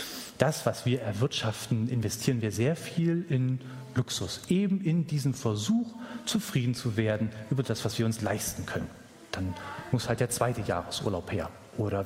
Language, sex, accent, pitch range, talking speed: German, male, German, 120-185 Hz, 160 wpm